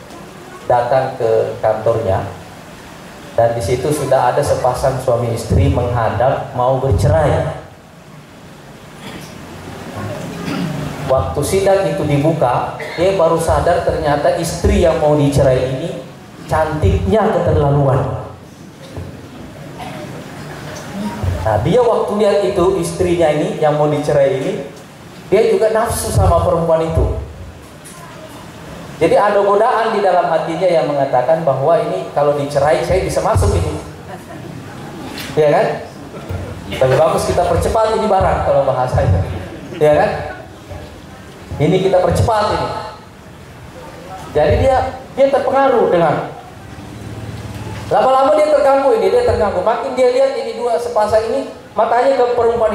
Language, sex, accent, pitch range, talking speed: Indonesian, male, native, 125-205 Hz, 115 wpm